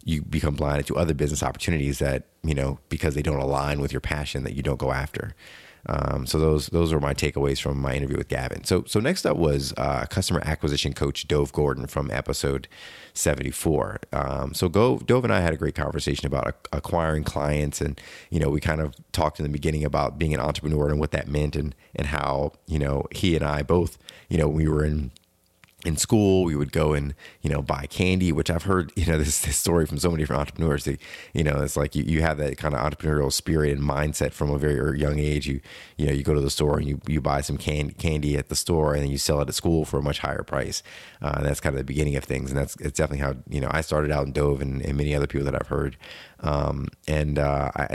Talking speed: 250 wpm